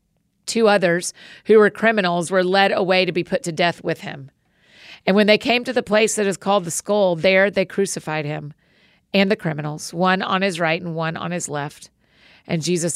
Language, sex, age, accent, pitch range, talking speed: English, female, 40-59, American, 165-200 Hz, 210 wpm